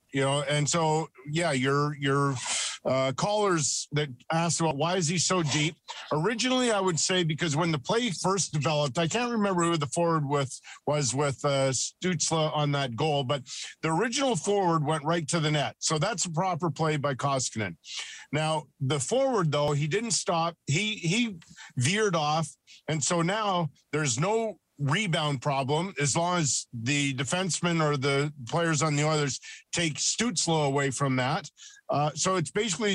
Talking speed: 175 wpm